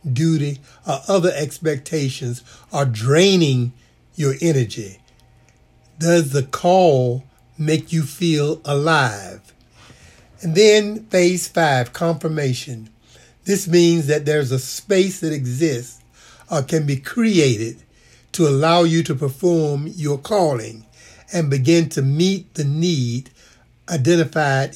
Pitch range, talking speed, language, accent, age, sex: 130-165 Hz, 110 wpm, English, American, 60-79, male